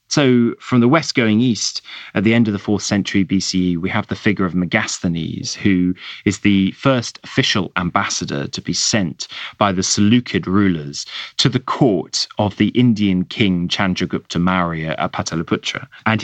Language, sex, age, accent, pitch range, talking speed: English, male, 30-49, British, 90-110 Hz, 165 wpm